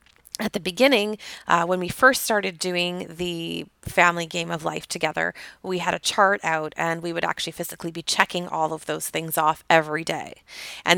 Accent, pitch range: American, 170-190 Hz